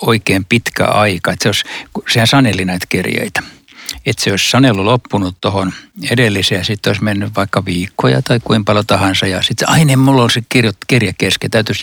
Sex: male